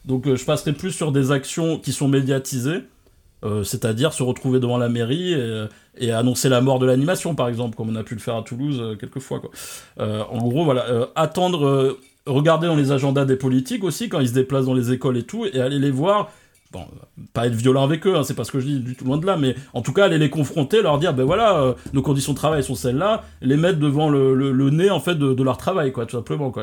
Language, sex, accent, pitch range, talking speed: French, male, French, 125-150 Hz, 275 wpm